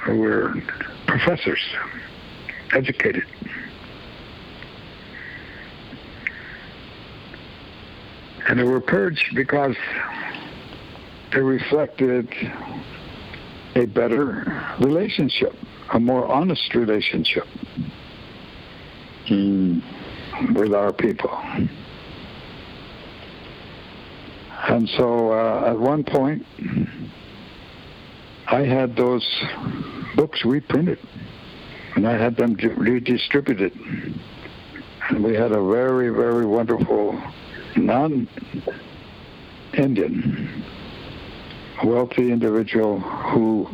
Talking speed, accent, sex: 65 wpm, American, male